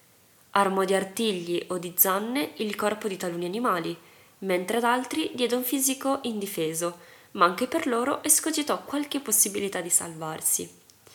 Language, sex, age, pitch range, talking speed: Italian, female, 20-39, 175-245 Hz, 145 wpm